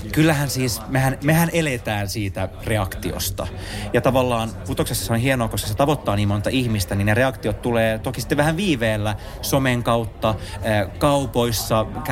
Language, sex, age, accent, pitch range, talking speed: Finnish, male, 30-49, native, 100-135 Hz, 150 wpm